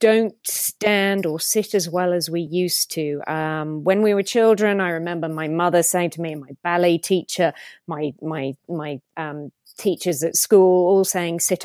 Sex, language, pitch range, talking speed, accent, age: female, English, 170-225 Hz, 185 wpm, British, 30-49